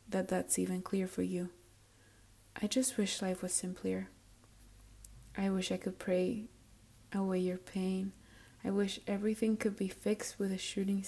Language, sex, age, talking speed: English, female, 20-39, 155 wpm